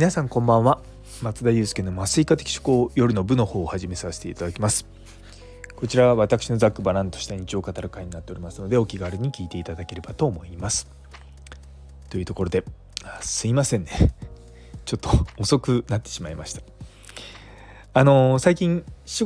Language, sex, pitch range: Japanese, male, 90-125 Hz